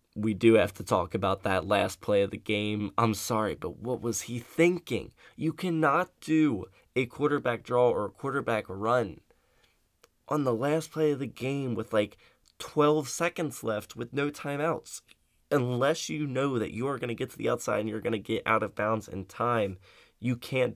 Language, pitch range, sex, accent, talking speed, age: English, 100-120 Hz, male, American, 195 wpm, 20-39